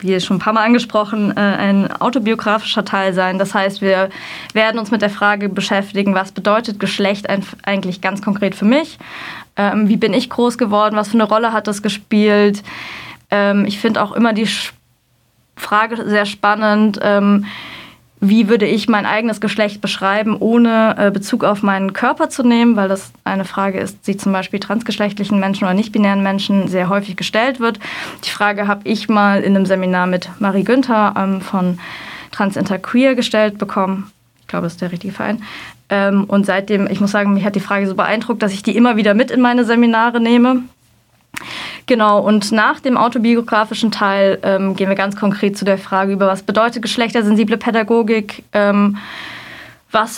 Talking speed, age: 170 wpm, 20-39